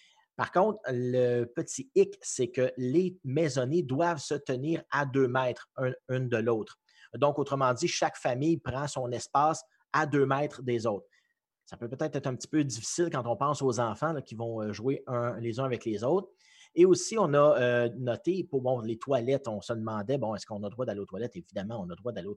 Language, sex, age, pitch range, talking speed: French, male, 30-49, 110-135 Hz, 215 wpm